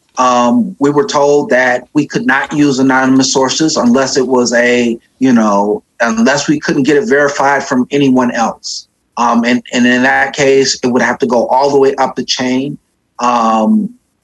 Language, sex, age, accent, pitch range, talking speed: English, male, 30-49, American, 120-140 Hz, 185 wpm